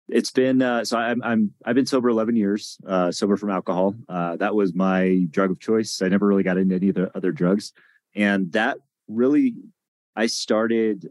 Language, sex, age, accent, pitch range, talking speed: English, male, 30-49, American, 85-100 Hz, 215 wpm